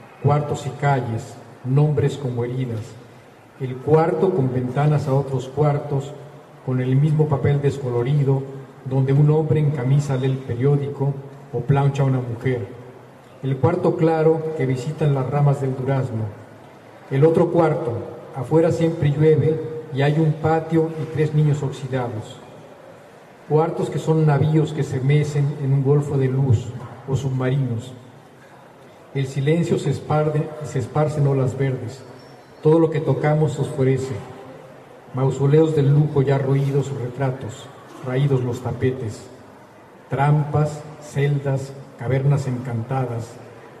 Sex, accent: male, Mexican